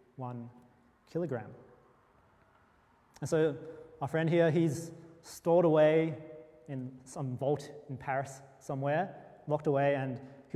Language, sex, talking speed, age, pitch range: English, male, 115 wpm, 30-49, 135-170 Hz